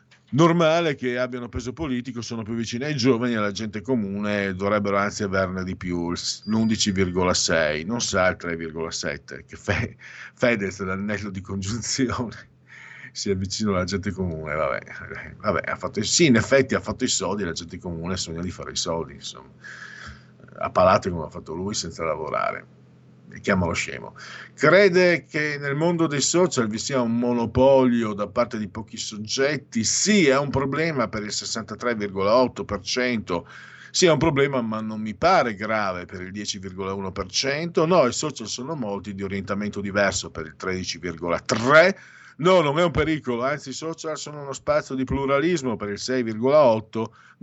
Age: 50-69